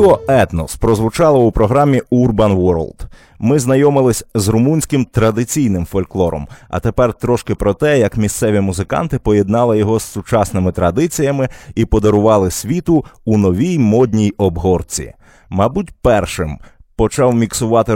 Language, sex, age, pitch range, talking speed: Ukrainian, male, 20-39, 100-125 Hz, 120 wpm